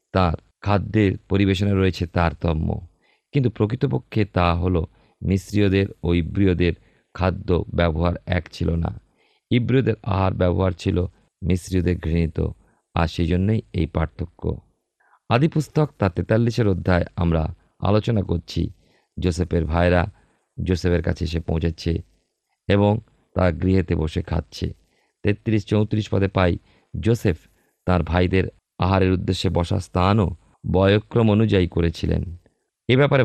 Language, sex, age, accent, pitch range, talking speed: Bengali, male, 50-69, native, 90-110 Hz, 110 wpm